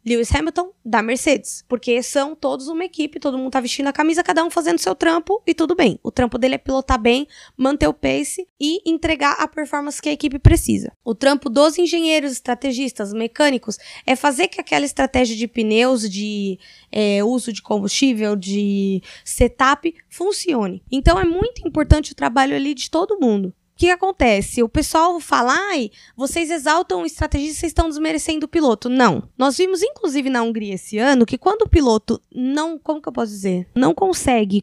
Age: 20-39